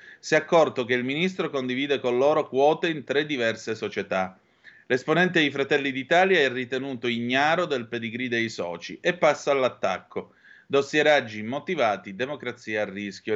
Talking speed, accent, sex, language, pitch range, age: 150 wpm, native, male, Italian, 105-155 Hz, 30-49